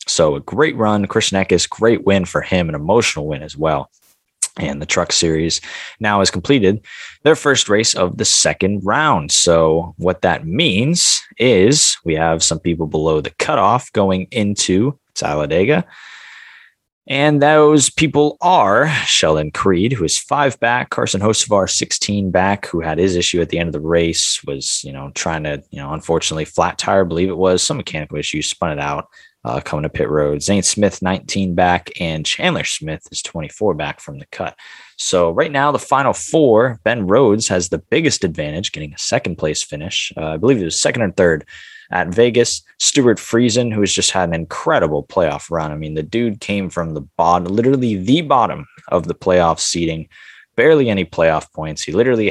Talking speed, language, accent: 190 wpm, English, American